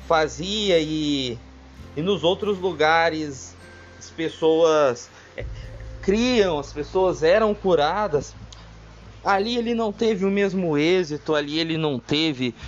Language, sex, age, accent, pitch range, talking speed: Portuguese, male, 20-39, Brazilian, 155-215 Hz, 115 wpm